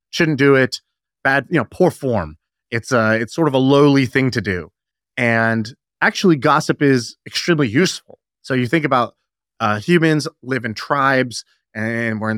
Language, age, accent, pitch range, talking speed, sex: English, 30-49, American, 110-145 Hz, 175 wpm, male